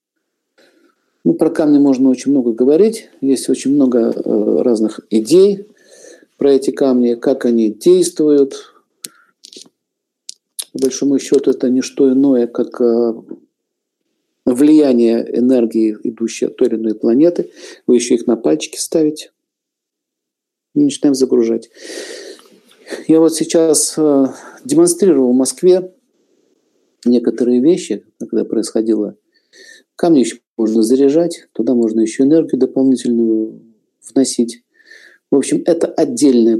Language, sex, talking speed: Russian, male, 110 wpm